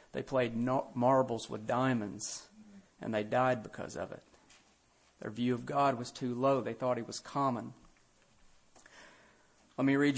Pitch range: 130-155 Hz